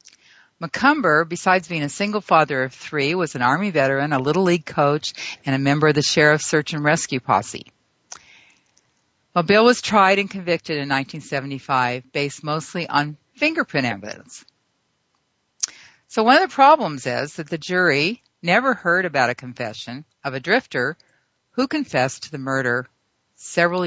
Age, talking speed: 50-69, 155 wpm